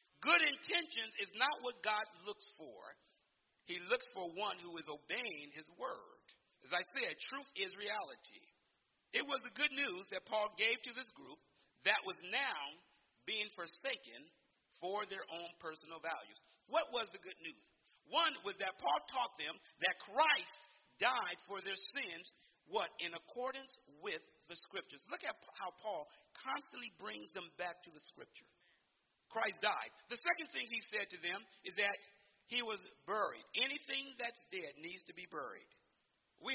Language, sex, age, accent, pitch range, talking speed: English, male, 40-59, American, 185-275 Hz, 165 wpm